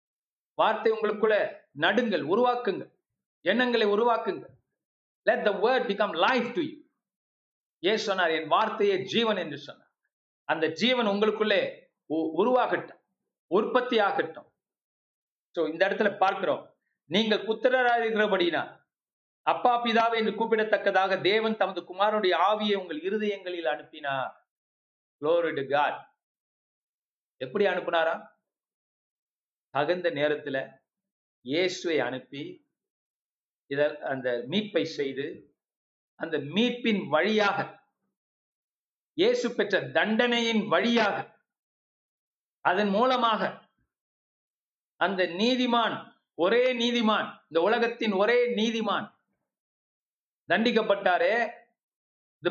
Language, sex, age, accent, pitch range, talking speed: Tamil, male, 50-69, native, 185-235 Hz, 65 wpm